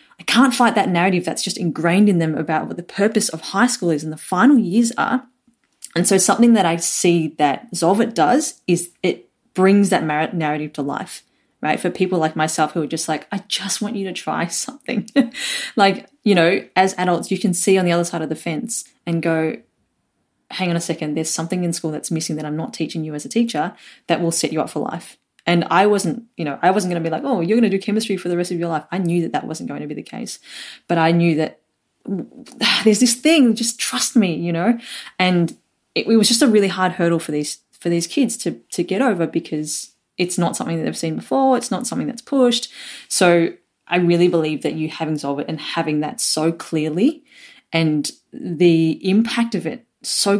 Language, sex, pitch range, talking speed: English, female, 160-225 Hz, 230 wpm